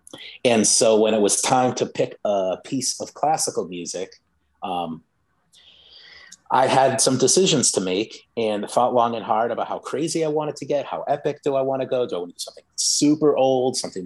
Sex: male